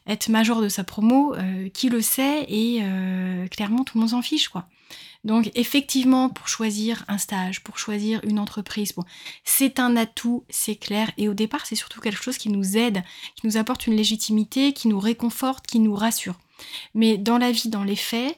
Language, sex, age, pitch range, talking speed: French, female, 20-39, 205-235 Hz, 200 wpm